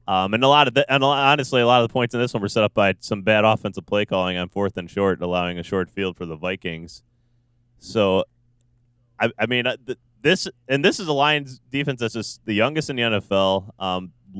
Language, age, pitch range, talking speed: English, 20-39, 95-120 Hz, 240 wpm